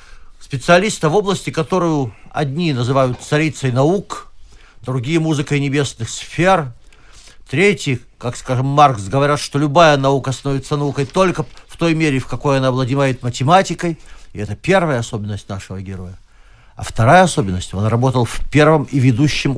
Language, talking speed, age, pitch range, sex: Russian, 140 wpm, 50-69, 120-155 Hz, male